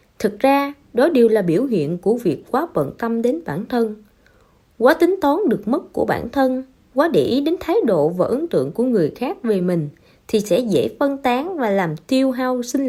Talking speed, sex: 220 wpm, female